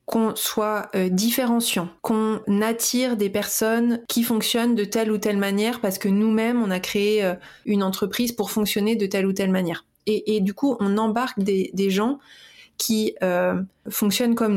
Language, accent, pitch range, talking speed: French, French, 205-245 Hz, 180 wpm